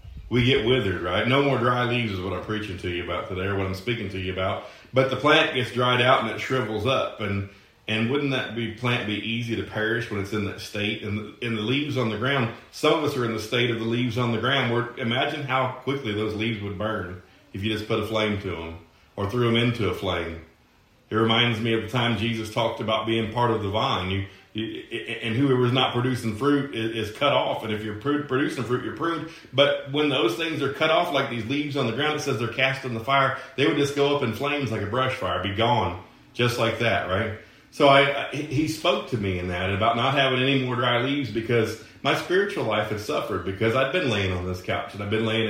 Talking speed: 255 wpm